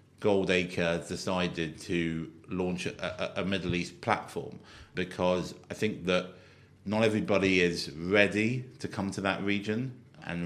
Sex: male